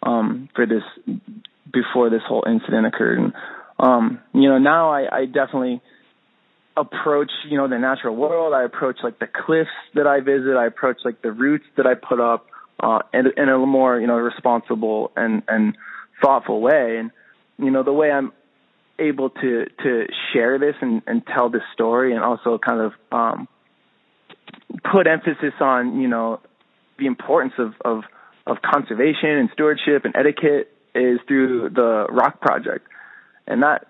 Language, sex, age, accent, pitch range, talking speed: English, male, 20-39, American, 115-150 Hz, 165 wpm